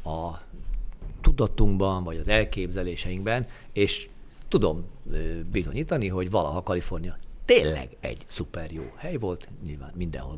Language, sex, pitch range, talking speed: Hungarian, male, 85-100 Hz, 110 wpm